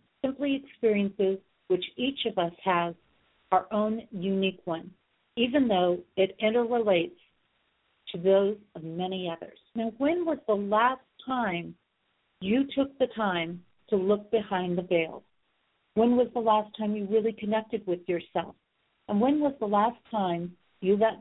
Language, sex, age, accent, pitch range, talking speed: English, female, 50-69, American, 175-215 Hz, 150 wpm